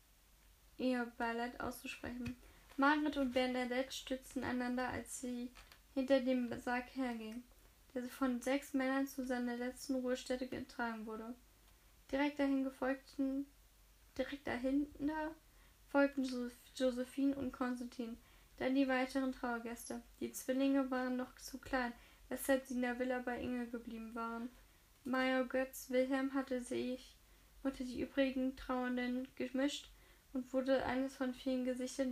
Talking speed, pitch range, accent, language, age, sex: 125 wpm, 245-270 Hz, German, German, 10-29, female